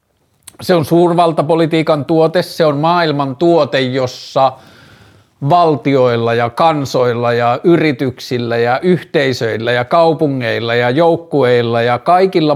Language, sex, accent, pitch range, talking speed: Finnish, male, native, 125-165 Hz, 105 wpm